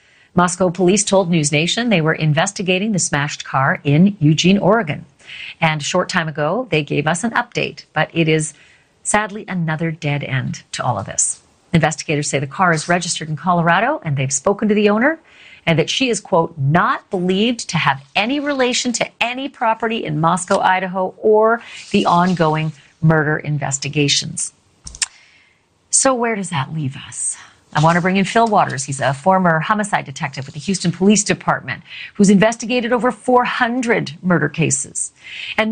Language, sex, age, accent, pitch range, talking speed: English, female, 40-59, American, 155-215 Hz, 170 wpm